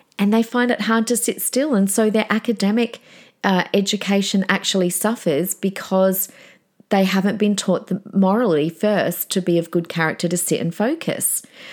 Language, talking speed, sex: English, 165 wpm, female